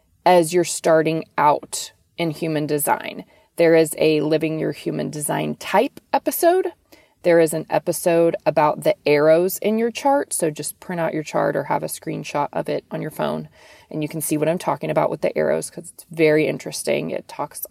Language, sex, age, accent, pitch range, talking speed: English, female, 20-39, American, 160-210 Hz, 195 wpm